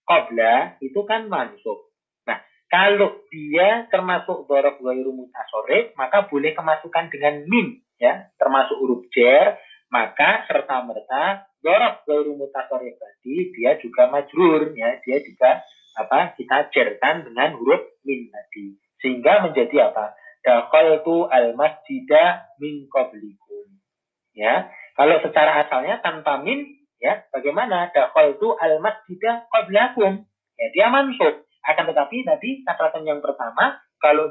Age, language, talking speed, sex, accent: 30-49, Indonesian, 120 wpm, male, native